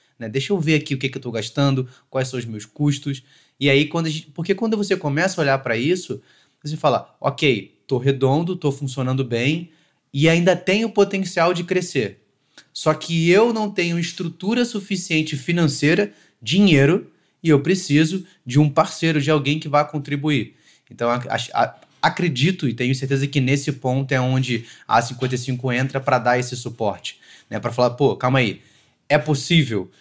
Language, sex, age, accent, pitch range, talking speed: Portuguese, male, 20-39, Brazilian, 120-155 Hz, 180 wpm